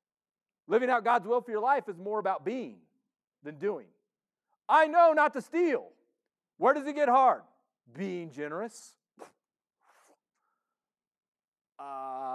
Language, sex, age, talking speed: English, male, 40-59, 120 wpm